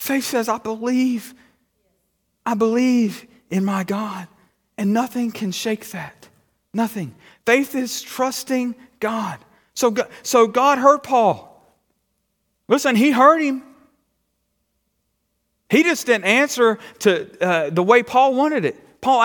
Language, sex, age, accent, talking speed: English, male, 40-59, American, 130 wpm